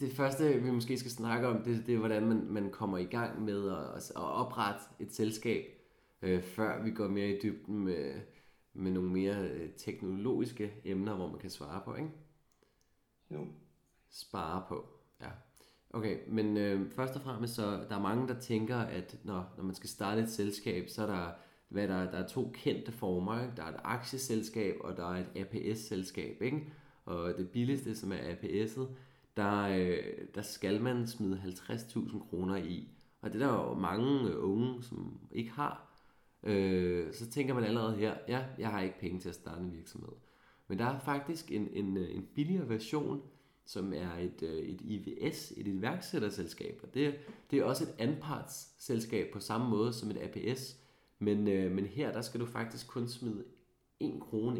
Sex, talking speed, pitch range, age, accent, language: male, 180 wpm, 95-125 Hz, 20-39, native, Danish